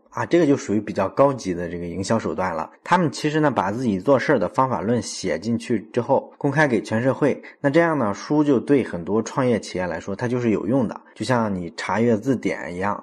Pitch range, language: 100-140 Hz, Chinese